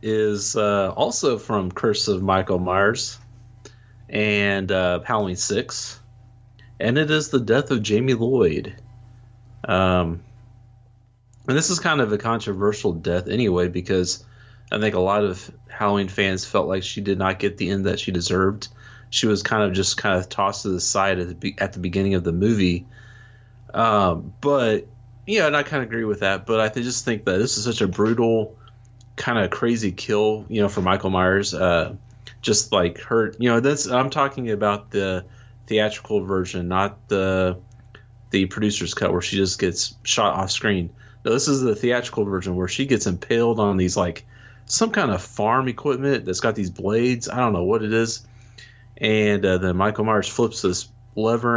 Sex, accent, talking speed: male, American, 185 wpm